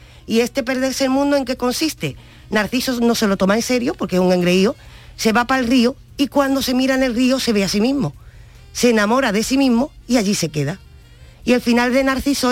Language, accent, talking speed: Spanish, American, 240 wpm